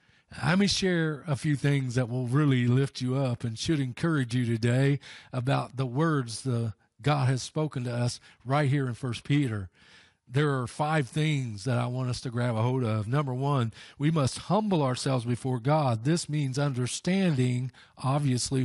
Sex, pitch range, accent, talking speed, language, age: male, 120-145 Hz, American, 180 wpm, English, 40-59